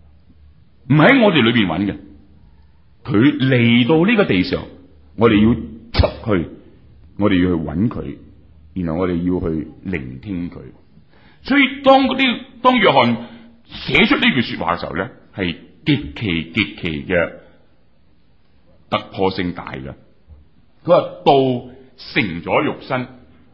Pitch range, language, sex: 75-125 Hz, Chinese, male